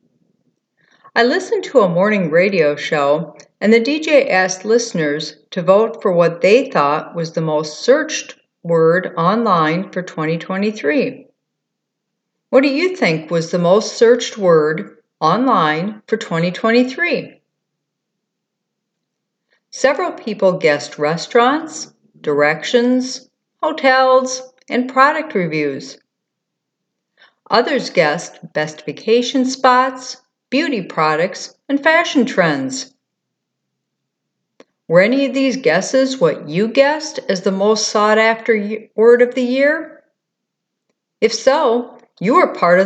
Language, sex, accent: English, female, American